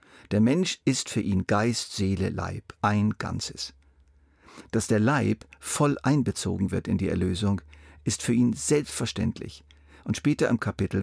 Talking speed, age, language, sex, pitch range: 145 wpm, 50-69, German, male, 95-120 Hz